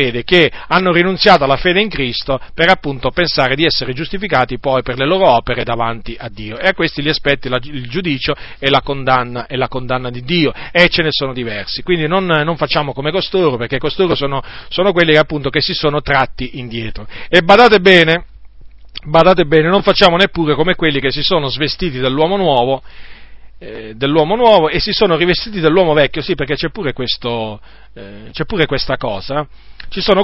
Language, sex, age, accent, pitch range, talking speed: Italian, male, 40-59, native, 130-180 Hz, 190 wpm